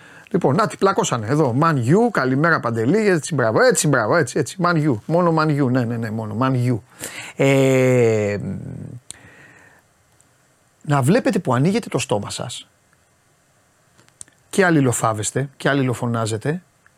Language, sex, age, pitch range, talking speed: Greek, male, 30-49, 130-205 Hz, 125 wpm